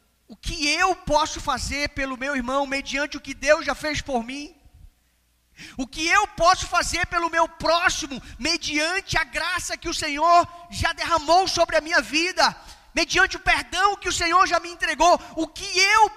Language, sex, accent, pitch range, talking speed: Portuguese, male, Brazilian, 250-330 Hz, 180 wpm